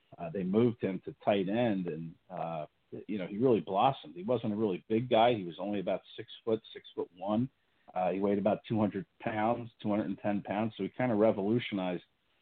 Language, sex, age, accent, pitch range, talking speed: English, male, 50-69, American, 95-115 Hz, 205 wpm